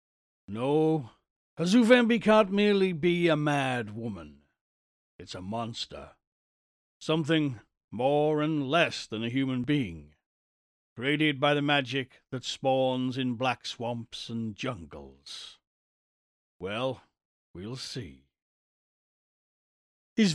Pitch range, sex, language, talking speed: 115-170 Hz, male, English, 100 wpm